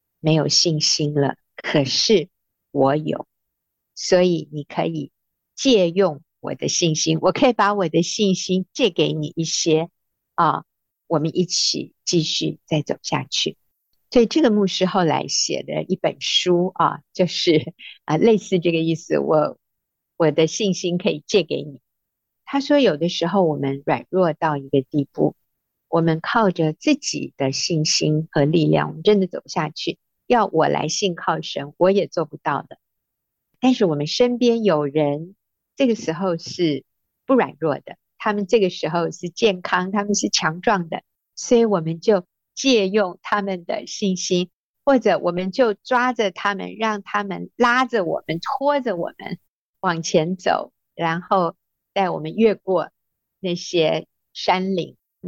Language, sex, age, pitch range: Chinese, female, 50-69, 160-205 Hz